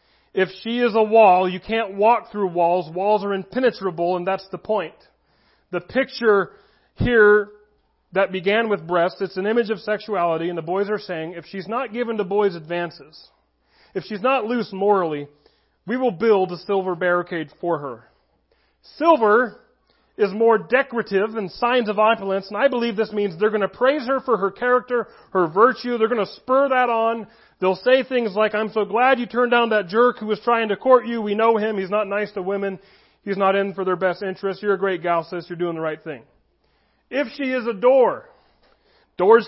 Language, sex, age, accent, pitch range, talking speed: English, male, 40-59, American, 190-235 Hz, 200 wpm